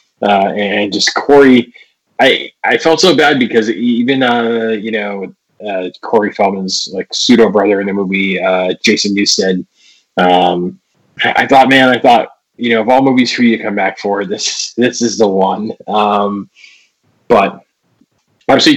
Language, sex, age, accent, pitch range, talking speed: English, male, 20-39, American, 105-135 Hz, 165 wpm